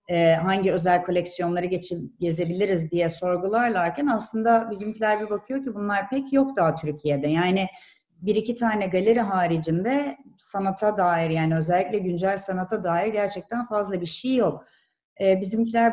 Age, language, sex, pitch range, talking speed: 30-49, Turkish, female, 175-215 Hz, 130 wpm